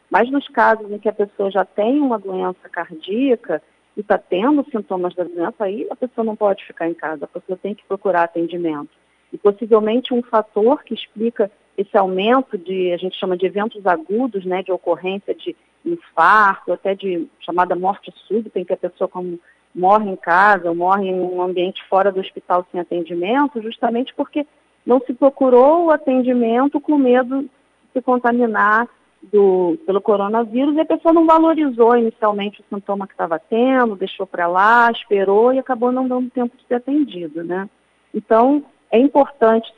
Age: 40-59